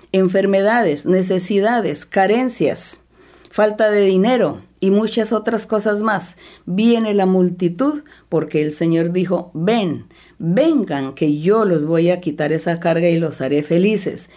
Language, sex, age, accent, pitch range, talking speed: Spanish, female, 50-69, American, 165-210 Hz, 135 wpm